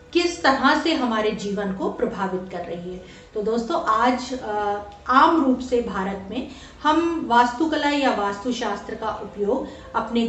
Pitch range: 210-270 Hz